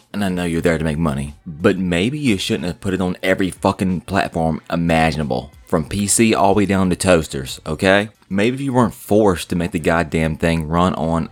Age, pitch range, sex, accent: 20-39, 85-100 Hz, male, American